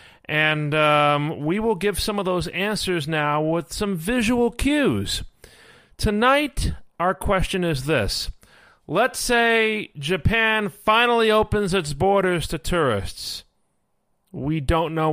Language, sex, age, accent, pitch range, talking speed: English, male, 40-59, American, 130-165 Hz, 125 wpm